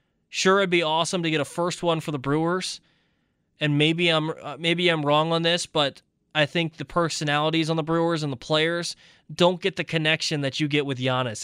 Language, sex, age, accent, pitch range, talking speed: English, male, 20-39, American, 135-170 Hz, 210 wpm